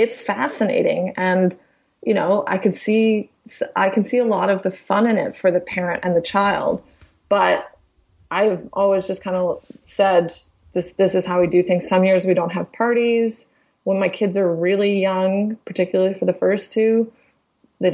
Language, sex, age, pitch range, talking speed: English, female, 20-39, 175-205 Hz, 180 wpm